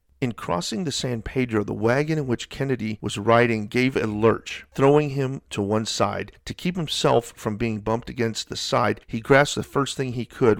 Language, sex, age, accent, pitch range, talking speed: English, male, 50-69, American, 105-130 Hz, 205 wpm